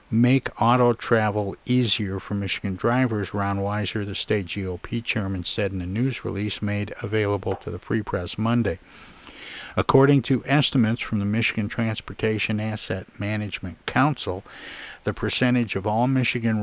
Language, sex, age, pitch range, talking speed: English, male, 60-79, 100-120 Hz, 145 wpm